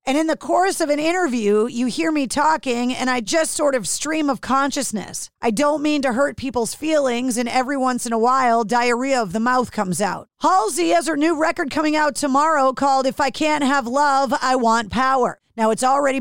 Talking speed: 215 wpm